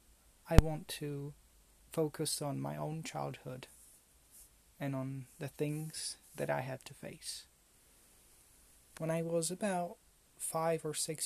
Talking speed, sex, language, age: 130 wpm, male, English, 30-49